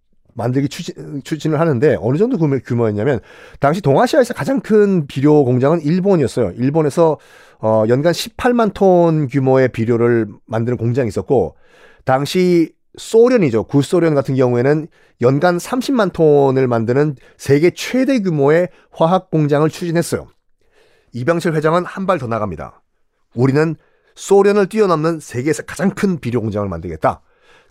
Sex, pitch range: male, 120-185 Hz